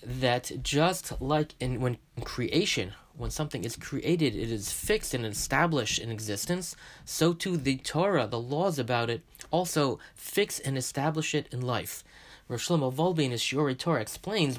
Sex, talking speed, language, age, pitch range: male, 155 wpm, English, 30-49, 125-165 Hz